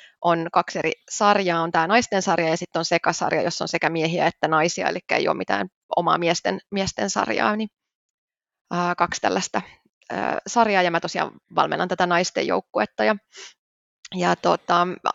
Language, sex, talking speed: Finnish, female, 165 wpm